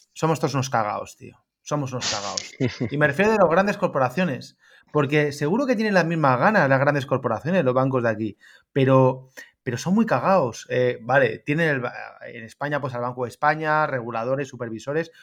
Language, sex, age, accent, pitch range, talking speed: Spanish, male, 30-49, Spanish, 125-160 Hz, 185 wpm